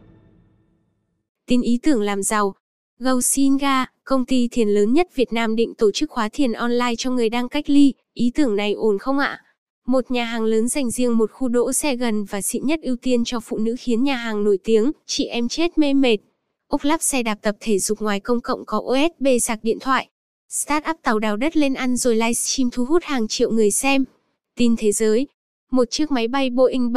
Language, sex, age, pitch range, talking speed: Vietnamese, female, 10-29, 225-275 Hz, 220 wpm